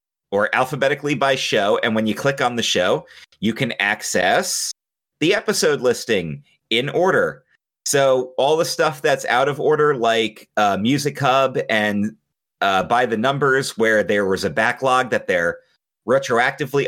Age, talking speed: 30-49, 155 wpm